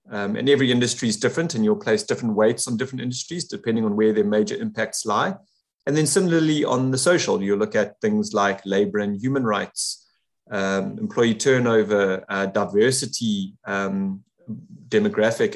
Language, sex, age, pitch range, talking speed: English, male, 30-49, 105-140 Hz, 165 wpm